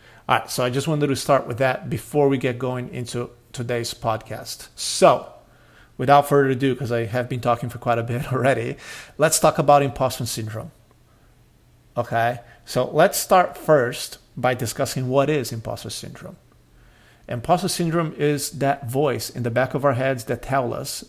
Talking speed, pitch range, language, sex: 170 wpm, 120-140 Hz, English, male